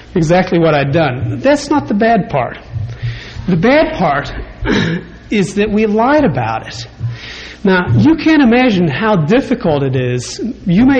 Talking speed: 155 wpm